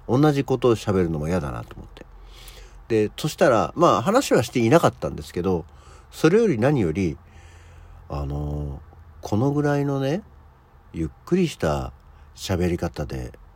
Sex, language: male, Japanese